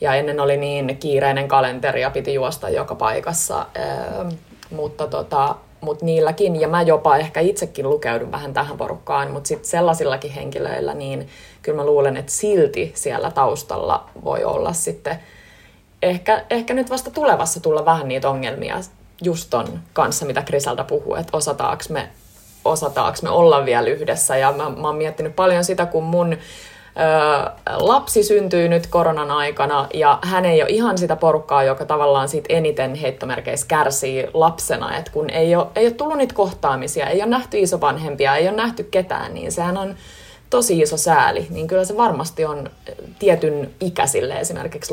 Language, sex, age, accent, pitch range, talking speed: Finnish, female, 20-39, native, 145-205 Hz, 160 wpm